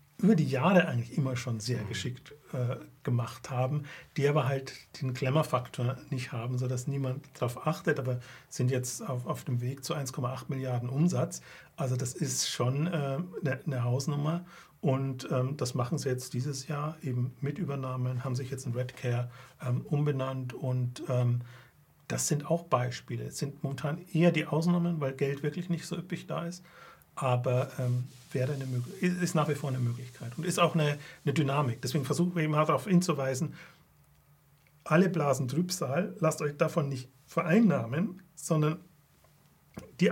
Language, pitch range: German, 130-160 Hz